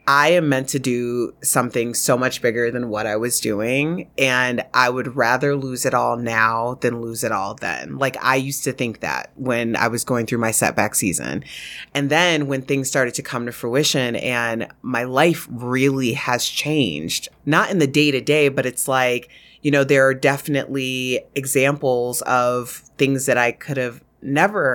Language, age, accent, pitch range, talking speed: English, 30-49, American, 120-140 Hz, 190 wpm